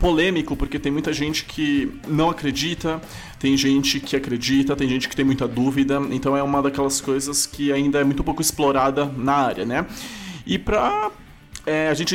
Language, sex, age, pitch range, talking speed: Portuguese, male, 20-39, 135-165 Hz, 185 wpm